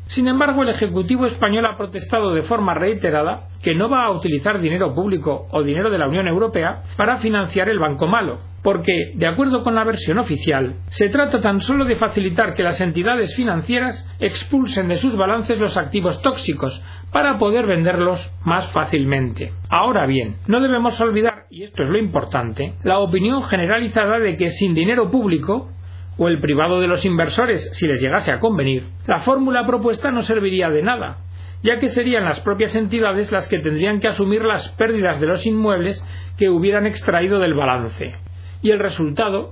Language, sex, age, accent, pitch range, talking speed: Spanish, male, 40-59, Spanish, 145-220 Hz, 180 wpm